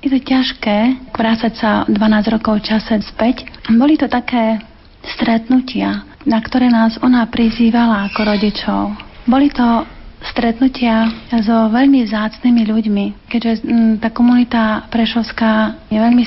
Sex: female